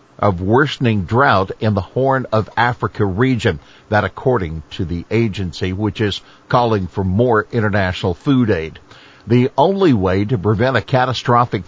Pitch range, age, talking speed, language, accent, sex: 100-130 Hz, 60-79, 150 wpm, English, American, male